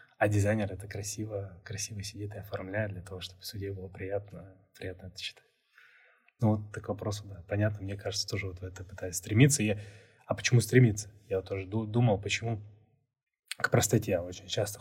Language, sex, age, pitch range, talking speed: Russian, male, 20-39, 100-120 Hz, 180 wpm